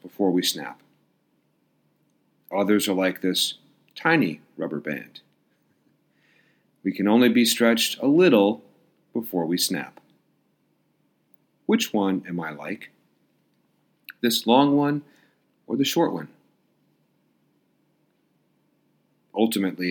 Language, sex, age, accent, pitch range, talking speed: English, male, 40-59, American, 100-130 Hz, 100 wpm